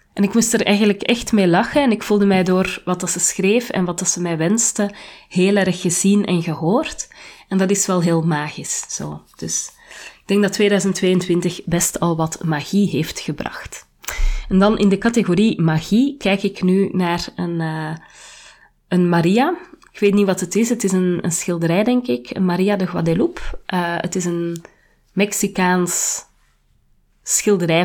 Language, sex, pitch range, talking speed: Dutch, female, 170-205 Hz, 180 wpm